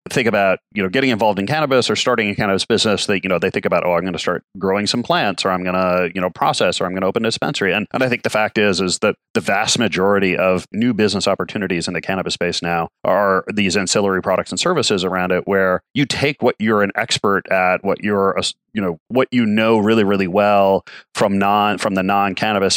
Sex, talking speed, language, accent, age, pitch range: male, 250 wpm, English, American, 30-49, 90-105 Hz